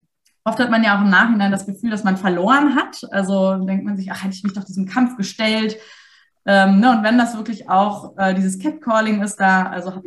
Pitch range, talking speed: 180-205 Hz, 215 wpm